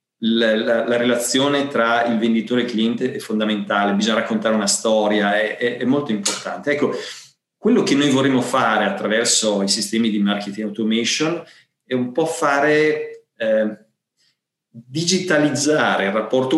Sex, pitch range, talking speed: male, 110-145 Hz, 150 wpm